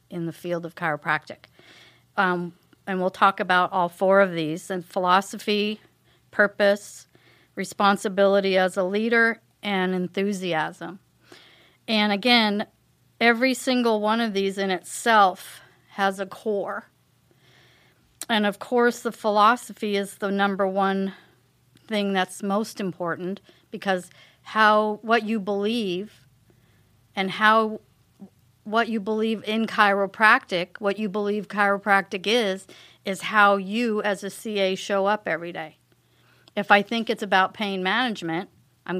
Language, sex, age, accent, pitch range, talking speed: English, female, 40-59, American, 185-215 Hz, 130 wpm